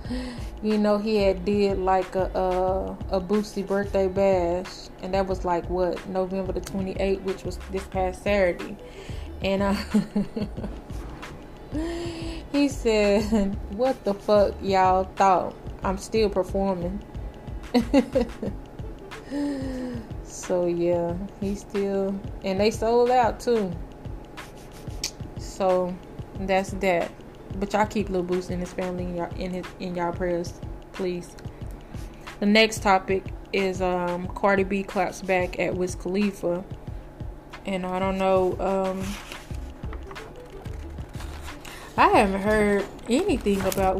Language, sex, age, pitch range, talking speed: English, female, 20-39, 185-210 Hz, 120 wpm